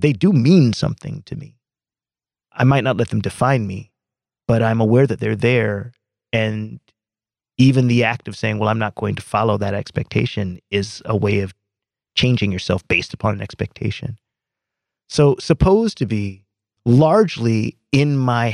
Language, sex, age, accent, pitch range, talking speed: English, male, 30-49, American, 105-130 Hz, 160 wpm